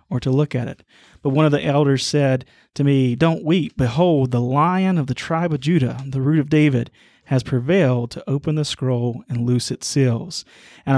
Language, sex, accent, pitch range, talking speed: English, male, American, 130-155 Hz, 210 wpm